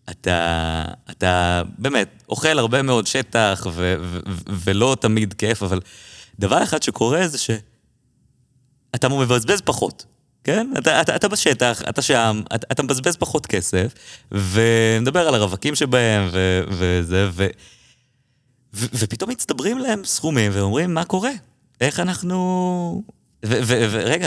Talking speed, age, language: 130 wpm, 20-39, Hebrew